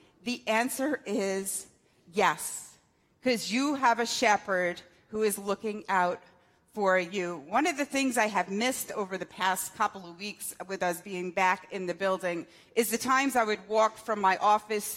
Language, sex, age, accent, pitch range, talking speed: English, female, 40-59, American, 205-270 Hz, 175 wpm